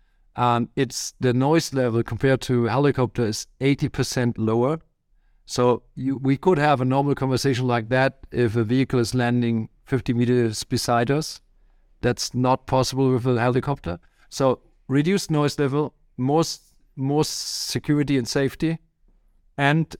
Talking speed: 140 wpm